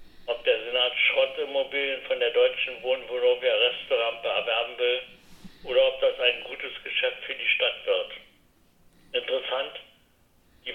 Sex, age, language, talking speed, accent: male, 60-79, German, 135 wpm, German